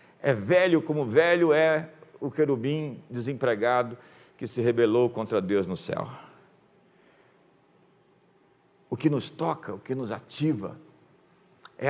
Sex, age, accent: male, 50-69, Brazilian